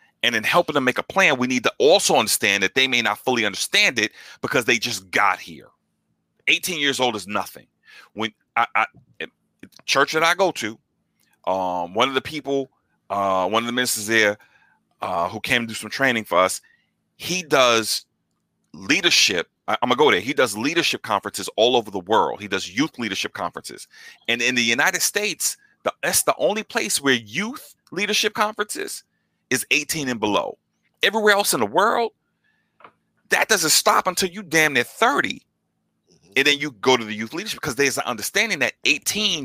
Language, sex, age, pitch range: English, male, 30-49, 105-165 Hz